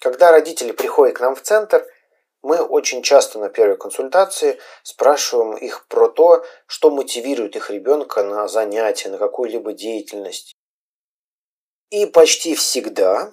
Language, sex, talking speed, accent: Russian, male, 130 wpm, native